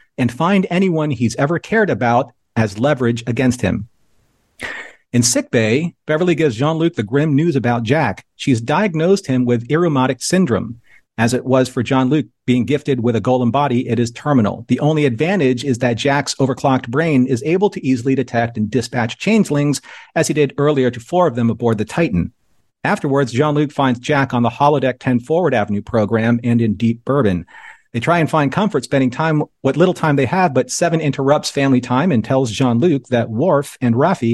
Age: 40-59